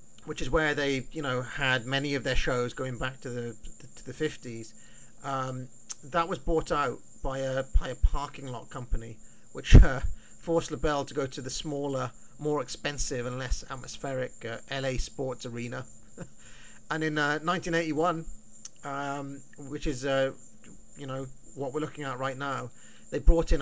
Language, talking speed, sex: English, 170 wpm, male